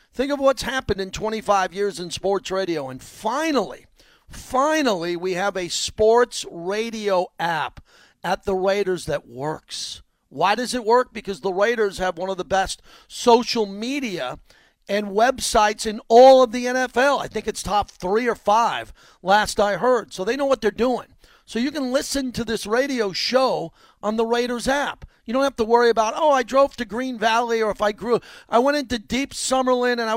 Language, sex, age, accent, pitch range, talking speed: English, male, 40-59, American, 195-245 Hz, 190 wpm